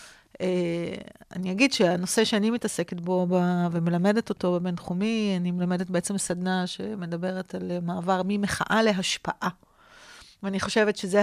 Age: 40-59